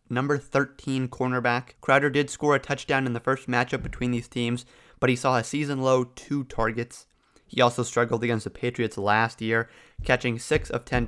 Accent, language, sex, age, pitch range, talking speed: American, English, male, 30-49, 115-135 Hz, 190 wpm